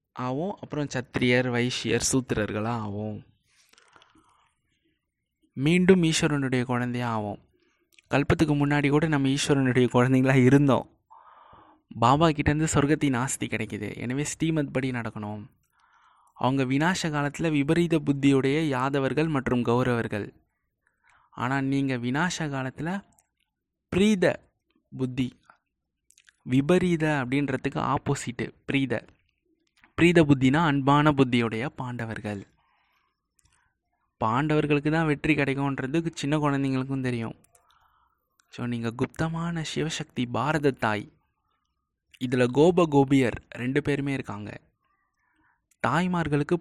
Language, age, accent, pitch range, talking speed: Tamil, 20-39, native, 125-155 Hz, 90 wpm